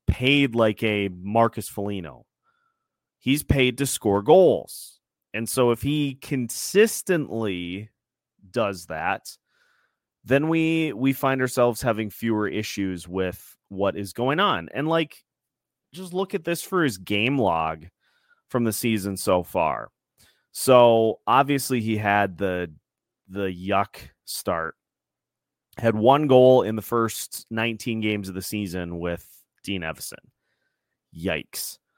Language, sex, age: English, male, 30-49